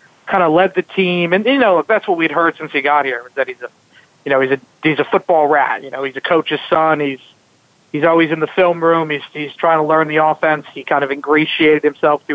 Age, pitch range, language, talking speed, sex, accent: 40-59, 145-170 Hz, English, 260 wpm, male, American